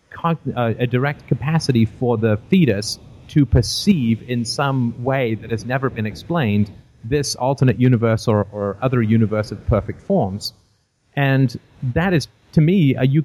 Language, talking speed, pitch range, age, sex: English, 150 wpm, 105-130 Hz, 30-49, male